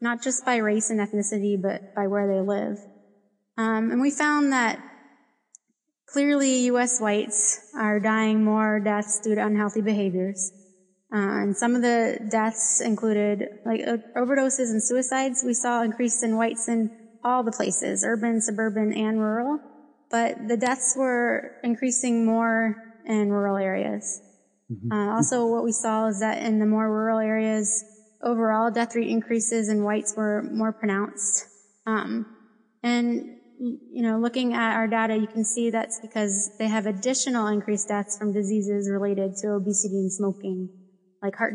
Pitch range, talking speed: 205-230 Hz, 155 wpm